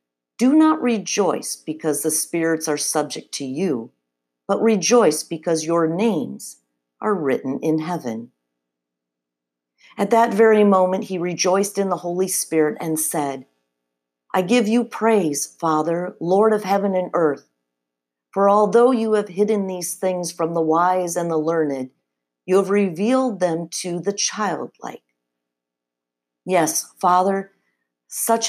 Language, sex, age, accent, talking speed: English, female, 50-69, American, 135 wpm